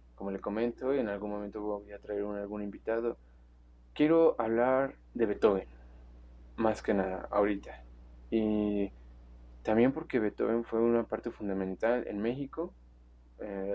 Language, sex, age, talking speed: Spanish, male, 20-39, 130 wpm